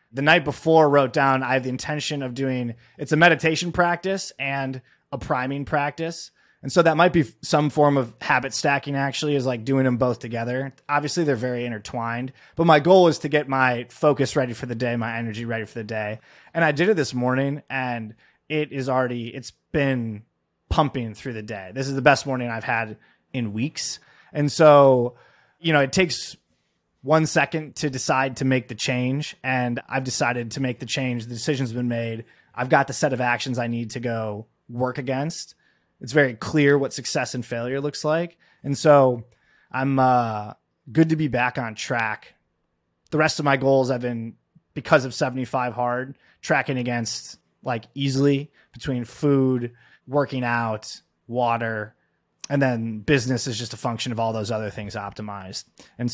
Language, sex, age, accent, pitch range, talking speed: English, male, 20-39, American, 120-145 Hz, 185 wpm